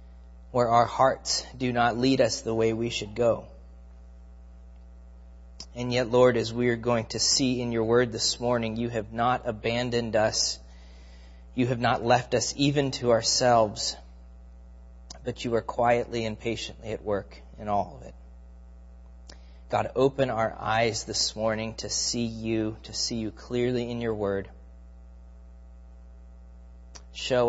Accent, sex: American, male